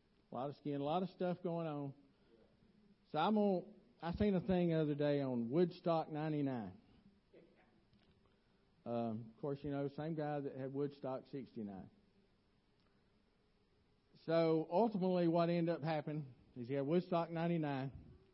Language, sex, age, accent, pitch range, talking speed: English, male, 50-69, American, 135-170 Hz, 145 wpm